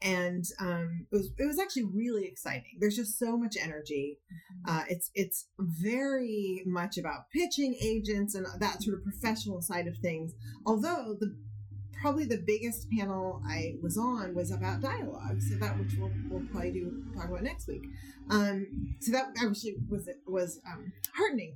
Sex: female